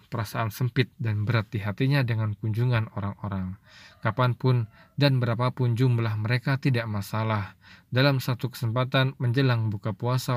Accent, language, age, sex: native, Indonesian, 20-39, male